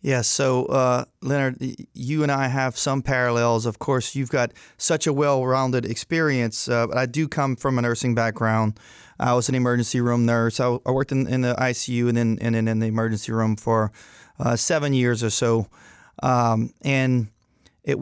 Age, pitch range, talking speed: 30-49, 120-135 Hz, 185 wpm